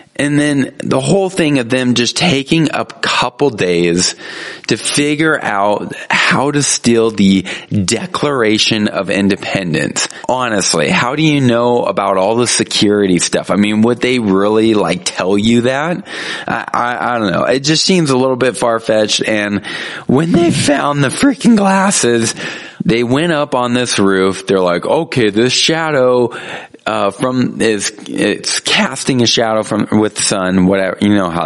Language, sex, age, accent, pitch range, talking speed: English, male, 20-39, American, 100-135 Hz, 165 wpm